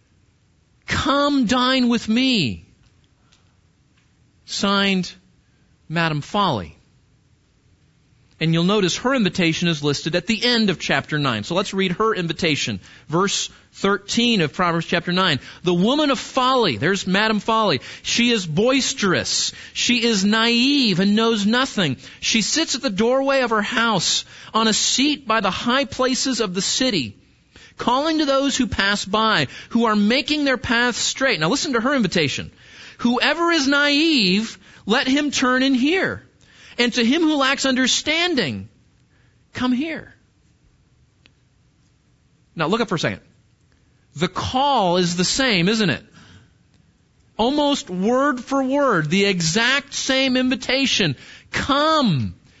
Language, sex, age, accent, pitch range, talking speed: English, male, 40-59, American, 170-260 Hz, 135 wpm